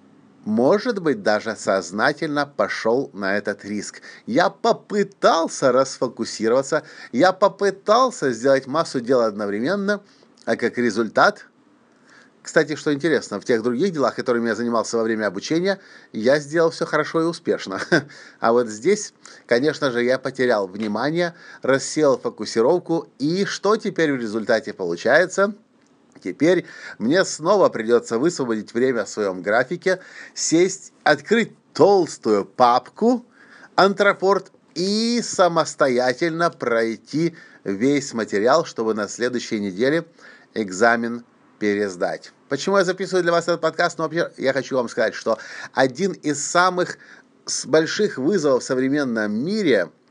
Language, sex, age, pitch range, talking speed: Russian, male, 30-49, 120-175 Hz, 120 wpm